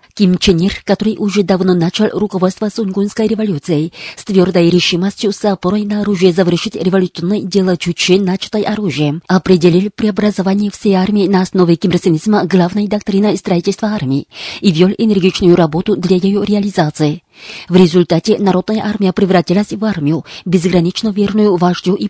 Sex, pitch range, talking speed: female, 180-205 Hz, 135 wpm